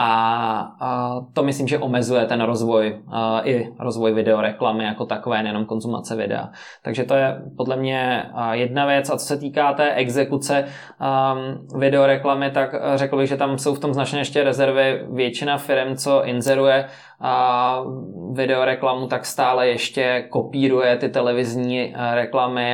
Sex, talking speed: male, 135 wpm